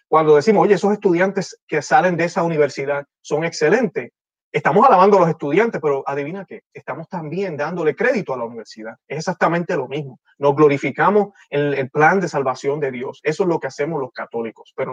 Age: 30-49